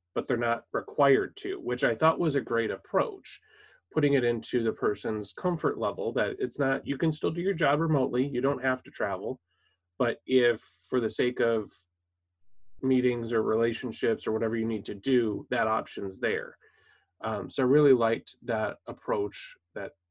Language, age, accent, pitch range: English, 20-39, American, 105-130 Hz